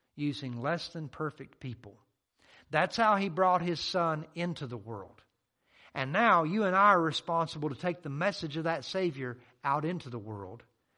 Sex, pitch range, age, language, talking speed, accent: male, 125-175 Hz, 50-69, English, 175 wpm, American